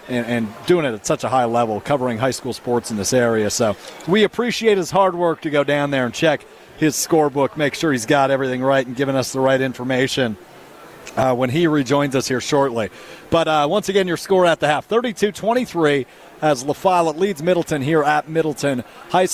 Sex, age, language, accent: male, 40-59, English, American